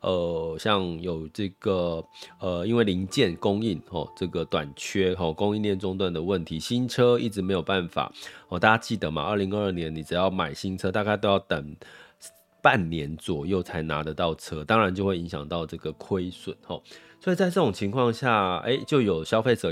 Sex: male